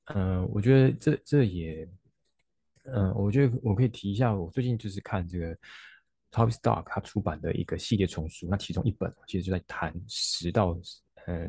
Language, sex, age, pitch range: Chinese, male, 20-39, 90-105 Hz